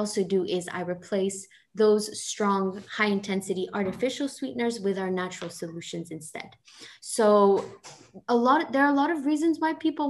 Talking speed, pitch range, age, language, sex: 160 wpm, 185-220 Hz, 20-39, English, female